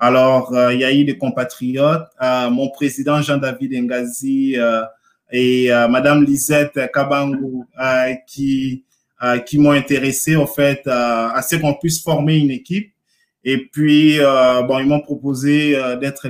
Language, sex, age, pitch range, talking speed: French, male, 20-39, 120-140 Hz, 160 wpm